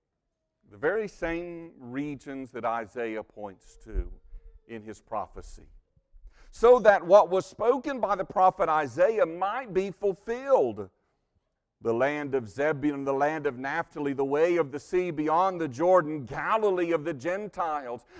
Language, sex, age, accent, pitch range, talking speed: English, male, 50-69, American, 145-195 Hz, 140 wpm